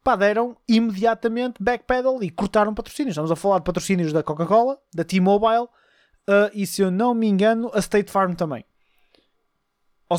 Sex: male